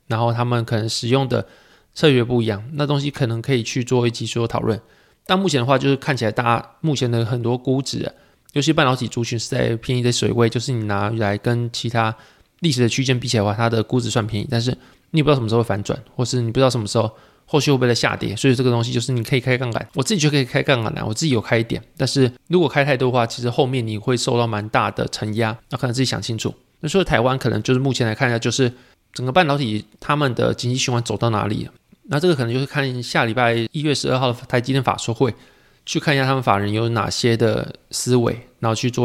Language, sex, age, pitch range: Chinese, male, 20-39, 115-135 Hz